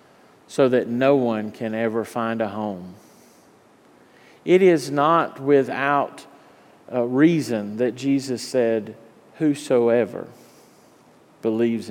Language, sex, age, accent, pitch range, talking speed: English, male, 40-59, American, 120-140 Hz, 100 wpm